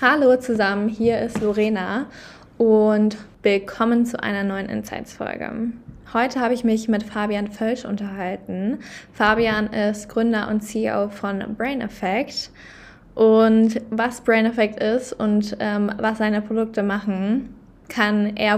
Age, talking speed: 20-39, 130 wpm